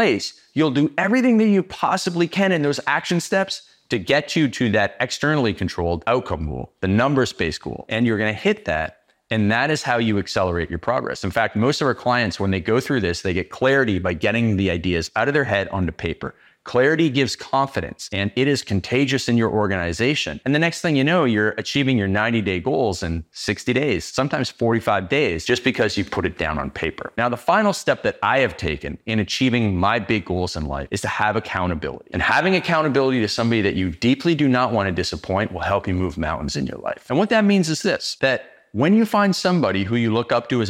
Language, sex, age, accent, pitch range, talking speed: English, male, 30-49, American, 100-145 Hz, 225 wpm